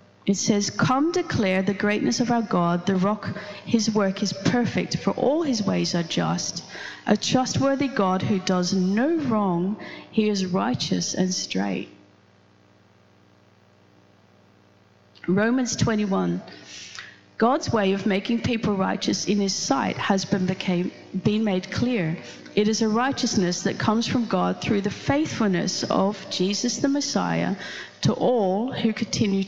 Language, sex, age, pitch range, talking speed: English, female, 30-49, 170-225 Hz, 140 wpm